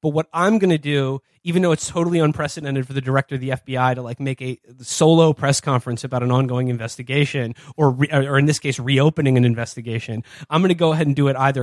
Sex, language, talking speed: male, English, 235 wpm